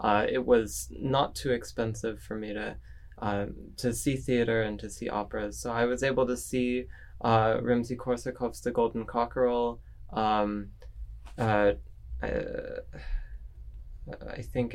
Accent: American